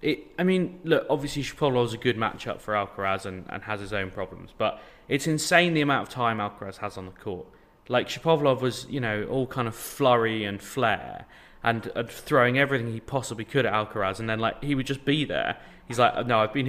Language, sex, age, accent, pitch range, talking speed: English, male, 20-39, British, 100-130 Hz, 220 wpm